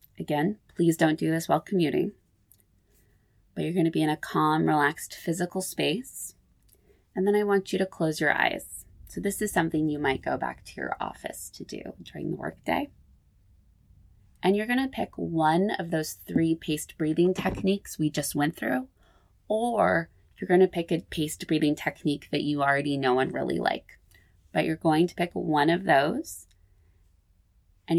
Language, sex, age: English, female, 20-39